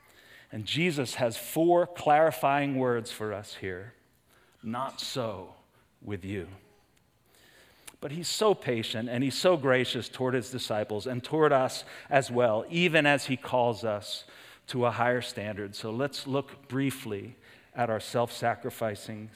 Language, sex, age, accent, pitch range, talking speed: English, male, 40-59, American, 120-160 Hz, 140 wpm